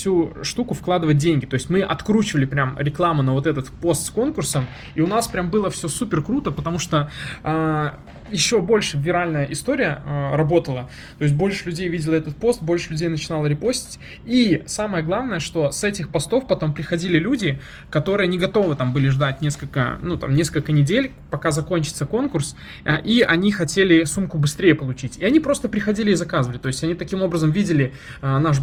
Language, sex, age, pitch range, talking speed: Russian, male, 20-39, 140-180 Hz, 185 wpm